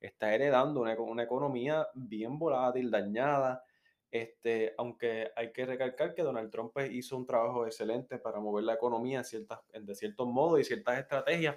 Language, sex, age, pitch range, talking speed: Spanish, male, 20-39, 110-135 Hz, 175 wpm